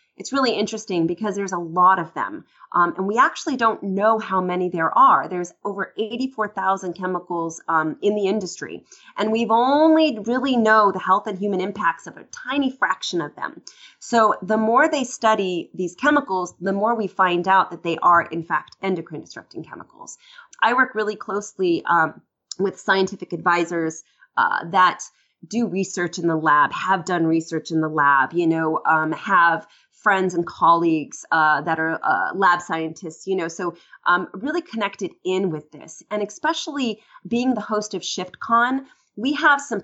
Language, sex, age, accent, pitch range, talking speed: English, female, 30-49, American, 170-220 Hz, 180 wpm